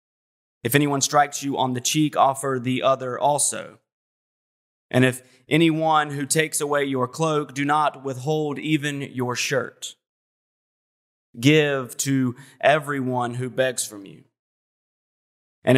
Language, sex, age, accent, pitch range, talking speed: English, male, 30-49, American, 125-150 Hz, 125 wpm